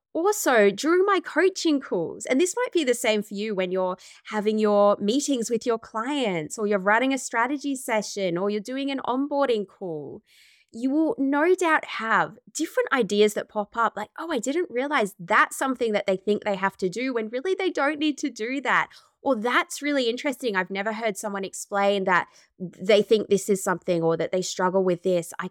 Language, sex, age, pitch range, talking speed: English, female, 20-39, 200-285 Hz, 205 wpm